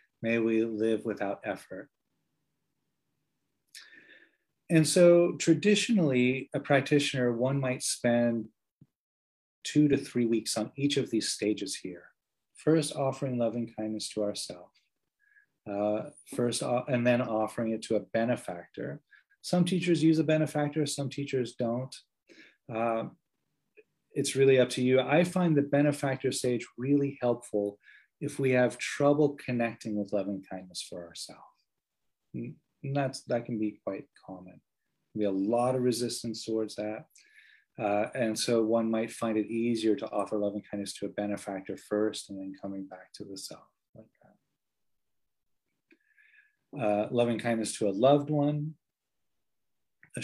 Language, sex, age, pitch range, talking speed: English, male, 30-49, 110-140 Hz, 135 wpm